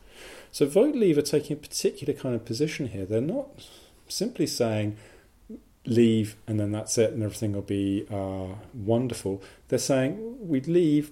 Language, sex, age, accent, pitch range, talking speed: English, male, 40-59, British, 105-125 Hz, 160 wpm